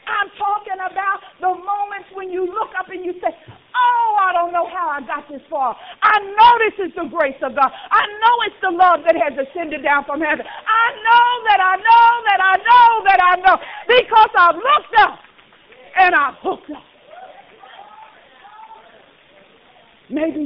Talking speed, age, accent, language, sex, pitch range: 175 wpm, 50-69, American, English, female, 305-405 Hz